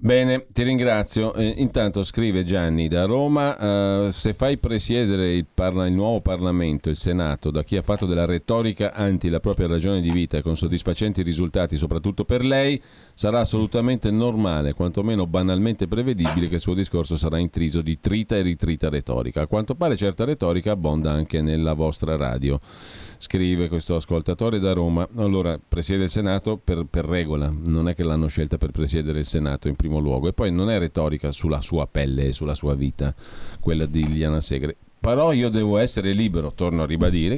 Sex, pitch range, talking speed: male, 80-110 Hz, 180 wpm